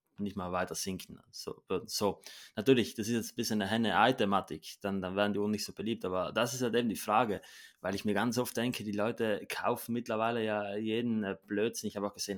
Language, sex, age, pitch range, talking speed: German, male, 20-39, 100-110 Hz, 225 wpm